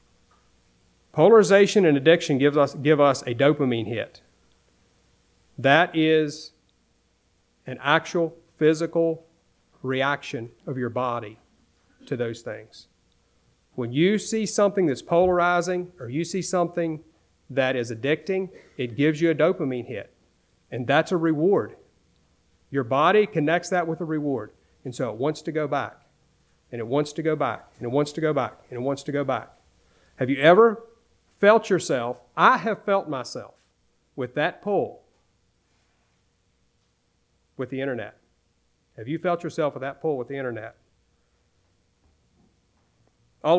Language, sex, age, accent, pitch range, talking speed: English, male, 40-59, American, 115-165 Hz, 140 wpm